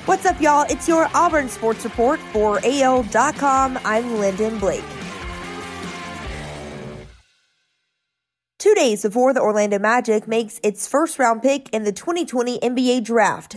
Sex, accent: female, American